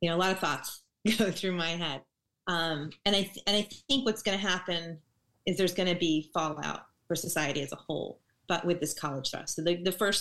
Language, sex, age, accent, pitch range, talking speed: English, female, 30-49, American, 160-195 Hz, 240 wpm